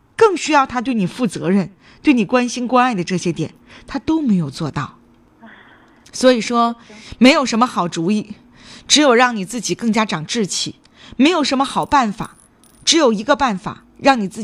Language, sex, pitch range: Chinese, female, 185-245 Hz